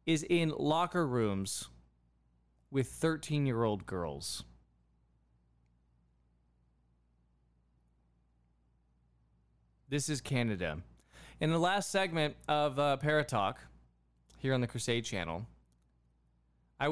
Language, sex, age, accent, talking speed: English, male, 20-39, American, 80 wpm